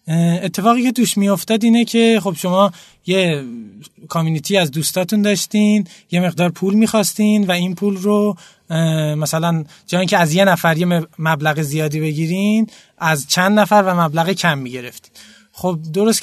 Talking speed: 150 wpm